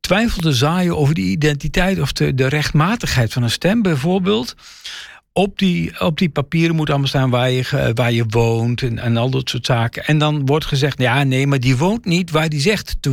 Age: 50-69